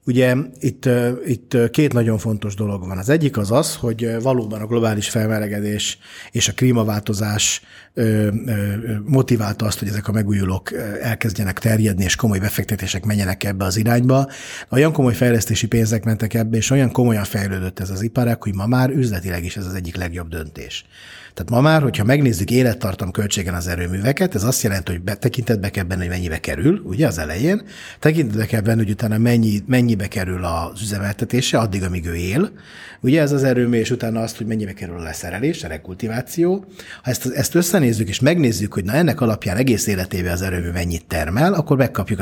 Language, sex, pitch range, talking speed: Hungarian, male, 100-125 Hz, 180 wpm